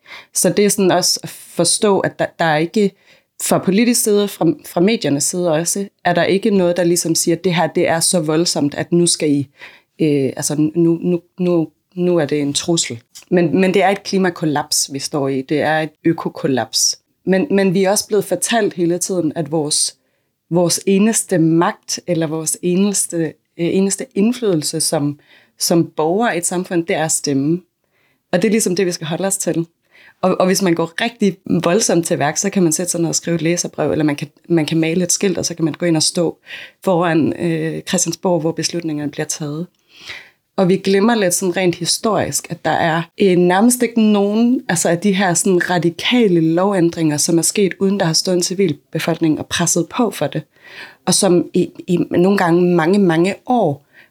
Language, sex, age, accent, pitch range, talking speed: Danish, female, 30-49, native, 160-190 Hz, 205 wpm